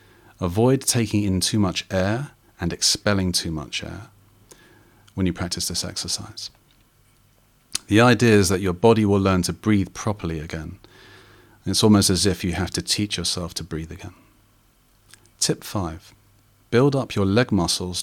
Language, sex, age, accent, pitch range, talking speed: English, male, 40-59, British, 90-110 Hz, 155 wpm